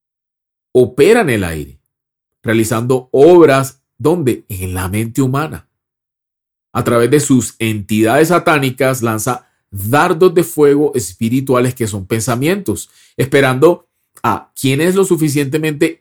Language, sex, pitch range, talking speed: Spanish, male, 110-140 Hz, 115 wpm